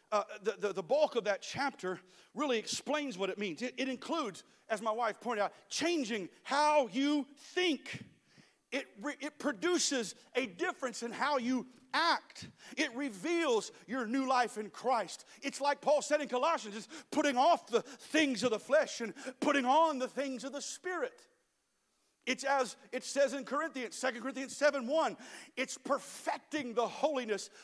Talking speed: 165 wpm